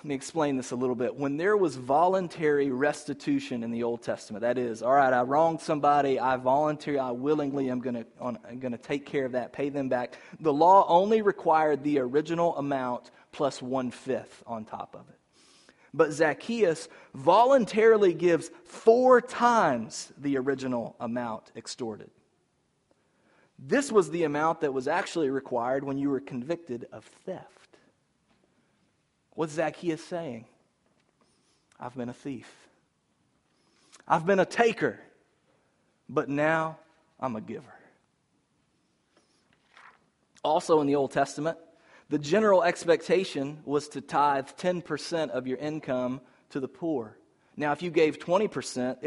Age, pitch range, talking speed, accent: 30-49, 130-165 Hz, 140 wpm, American